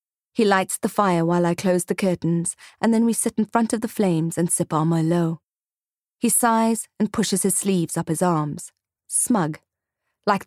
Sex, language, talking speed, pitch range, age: female, English, 190 wpm, 165-215 Hz, 30-49